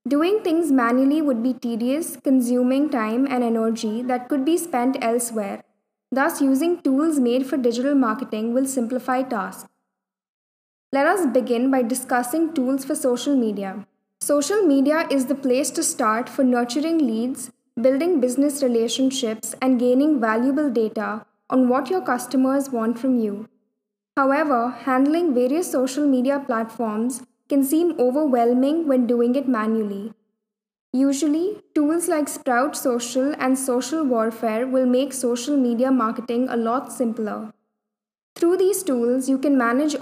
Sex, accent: female, Indian